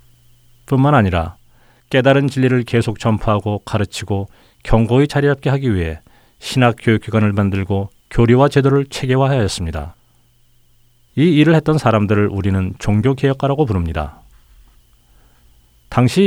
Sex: male